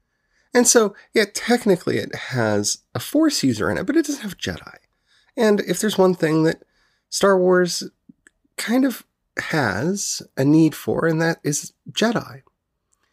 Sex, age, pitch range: male, 30-49, 120-175 Hz